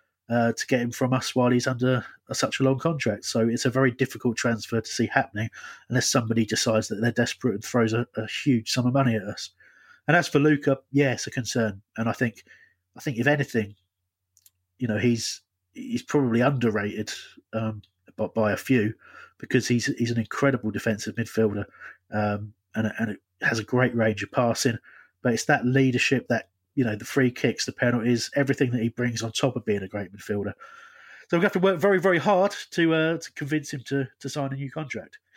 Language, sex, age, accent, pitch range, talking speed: English, male, 30-49, British, 115-145 Hz, 210 wpm